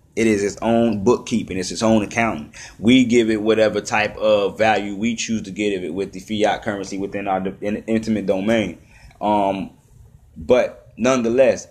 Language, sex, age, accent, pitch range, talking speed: English, male, 20-39, American, 105-130 Hz, 170 wpm